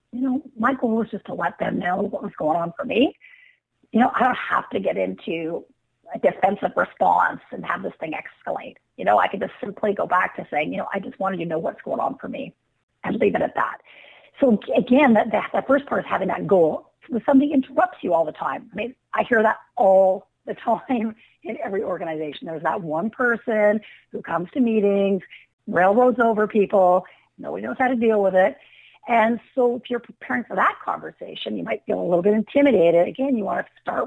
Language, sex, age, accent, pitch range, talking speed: English, female, 50-69, American, 195-260 Hz, 220 wpm